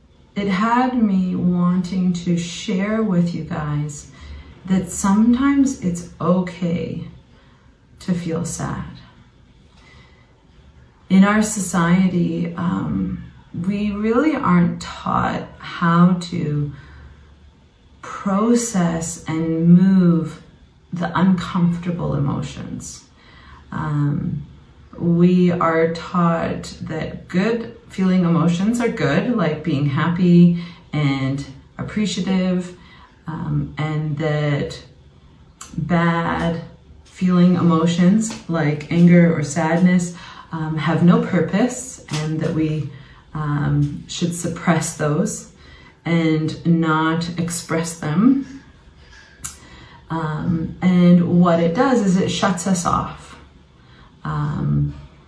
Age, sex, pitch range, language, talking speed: 30-49, female, 150-180 Hz, English, 90 wpm